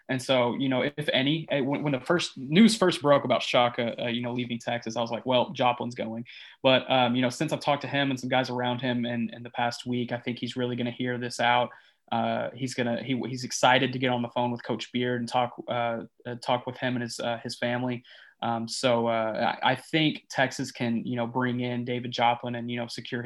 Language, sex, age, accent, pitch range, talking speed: English, male, 20-39, American, 120-130 Hz, 255 wpm